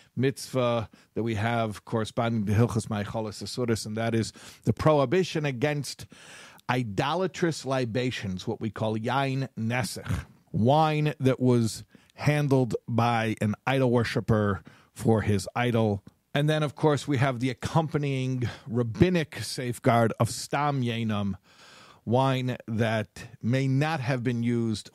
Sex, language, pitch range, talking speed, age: male, English, 110-140 Hz, 125 wpm, 50-69